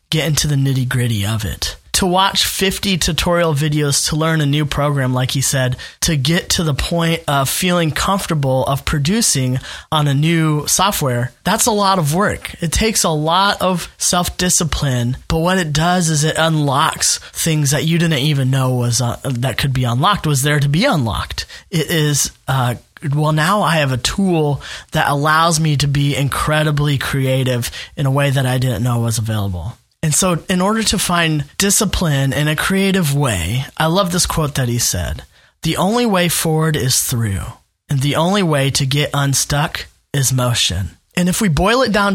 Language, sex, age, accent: English, male, 20-39, American